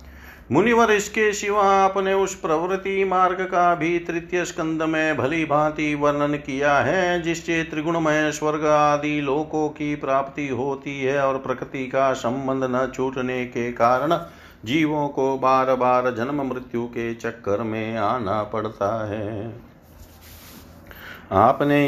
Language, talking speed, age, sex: Hindi, 130 wpm, 50-69, male